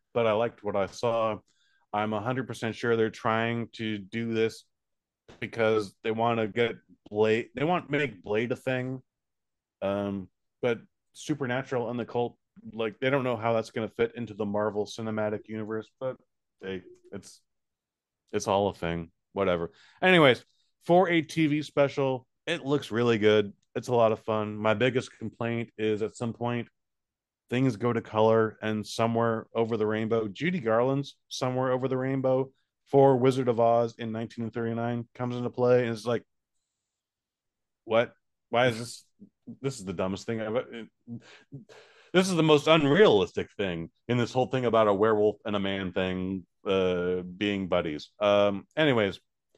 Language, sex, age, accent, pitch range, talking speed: English, male, 30-49, American, 105-130 Hz, 165 wpm